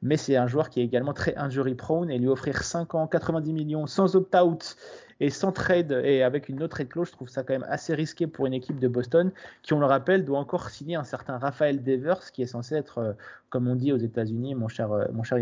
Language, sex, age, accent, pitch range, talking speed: French, male, 30-49, French, 125-155 Hz, 240 wpm